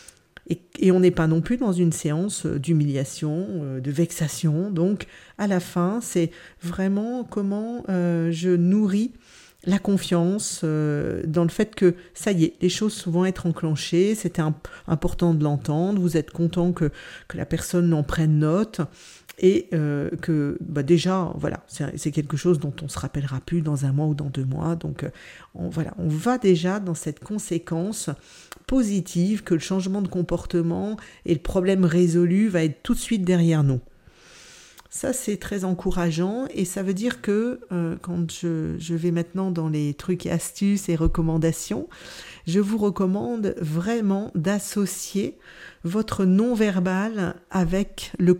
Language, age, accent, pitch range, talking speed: French, 50-69, French, 165-200 Hz, 165 wpm